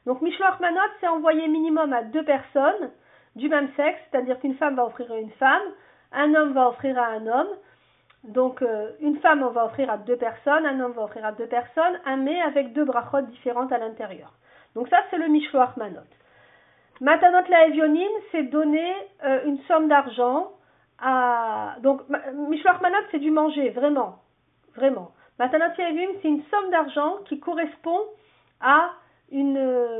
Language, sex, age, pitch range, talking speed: French, female, 50-69, 245-310 Hz, 175 wpm